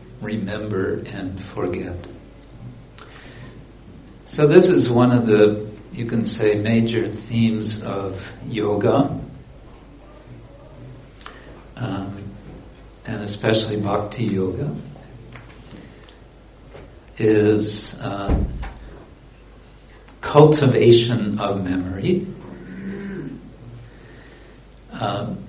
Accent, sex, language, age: American, male, English, 60-79